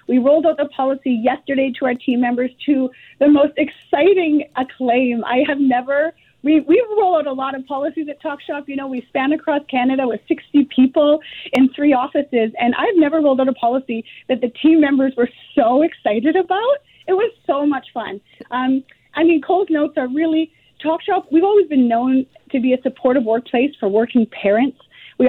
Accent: American